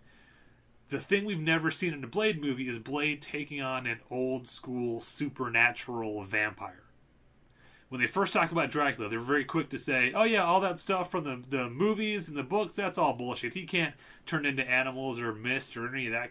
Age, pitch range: 30-49, 115-145 Hz